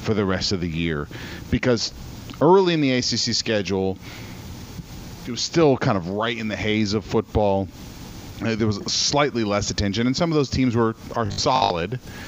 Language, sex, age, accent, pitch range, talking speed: English, male, 40-59, American, 95-125 Hz, 175 wpm